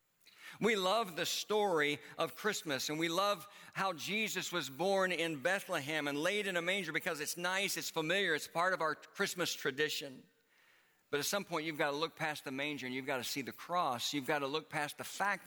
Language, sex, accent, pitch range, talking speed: English, male, American, 125-170 Hz, 215 wpm